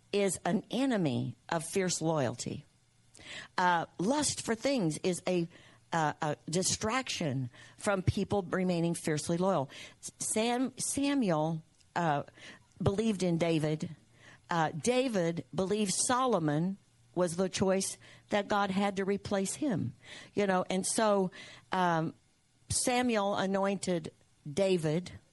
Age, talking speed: 50-69, 110 wpm